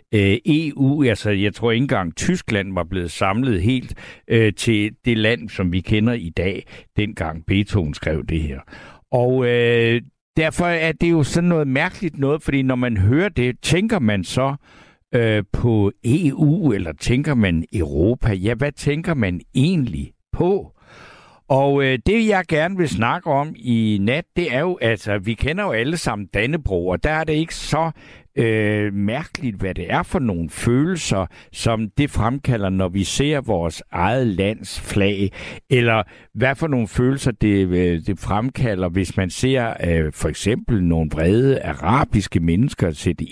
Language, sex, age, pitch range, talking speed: Danish, male, 60-79, 105-150 Hz, 160 wpm